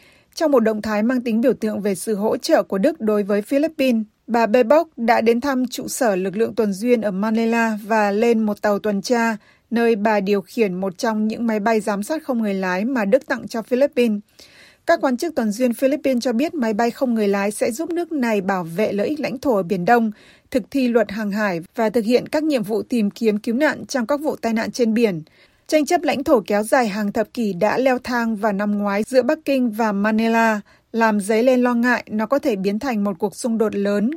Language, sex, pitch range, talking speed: Vietnamese, female, 215-260 Hz, 240 wpm